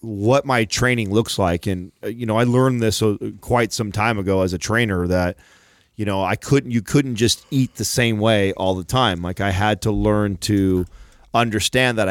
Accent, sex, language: American, male, English